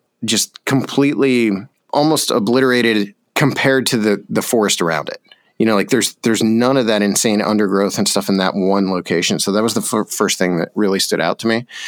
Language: English